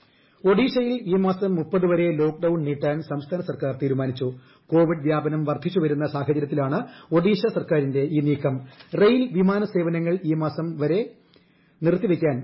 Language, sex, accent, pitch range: Malayalam, male, native, 145-180 Hz